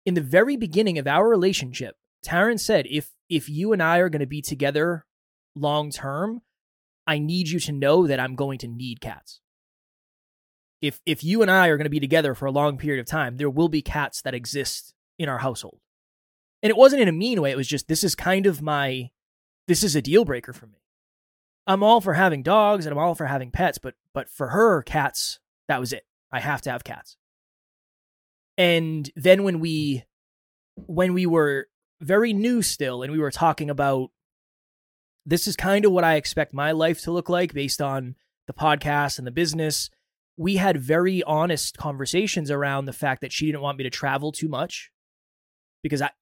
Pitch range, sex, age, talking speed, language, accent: 140-180 Hz, male, 20-39, 205 wpm, English, American